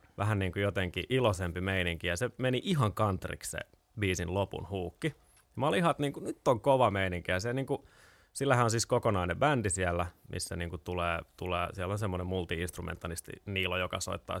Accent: native